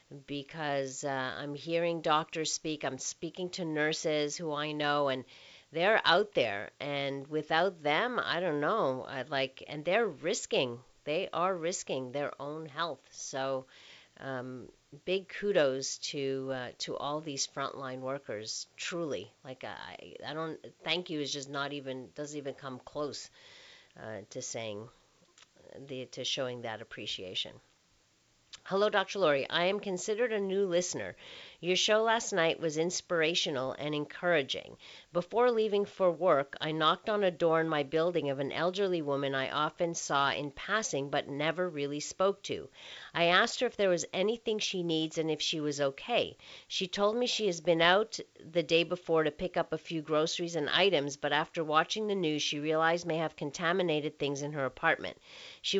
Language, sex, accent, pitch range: English, female, American, 140-180 Hz